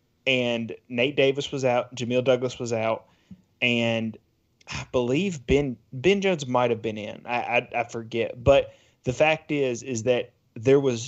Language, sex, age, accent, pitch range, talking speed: English, male, 20-39, American, 115-135 Hz, 160 wpm